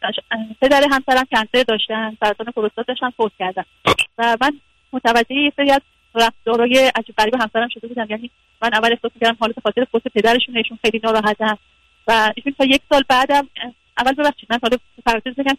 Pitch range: 225-260 Hz